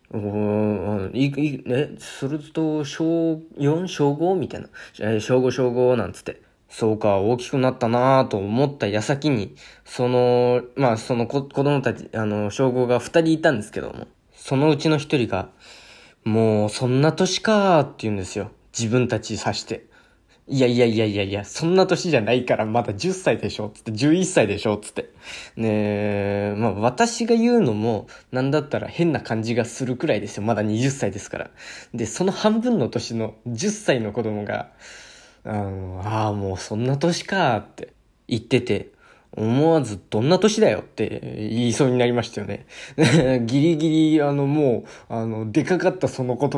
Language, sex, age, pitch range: Japanese, male, 20-39, 105-145 Hz